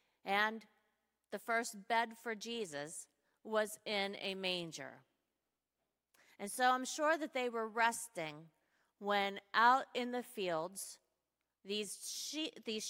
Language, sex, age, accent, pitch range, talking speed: English, female, 40-59, American, 190-245 Hz, 115 wpm